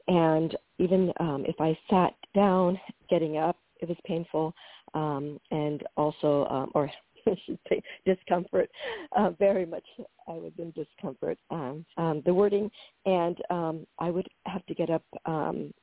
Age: 50-69